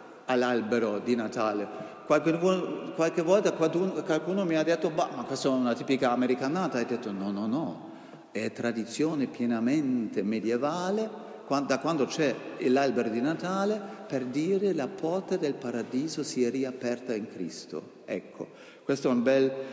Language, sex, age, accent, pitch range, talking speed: Italian, male, 50-69, native, 120-195 Hz, 145 wpm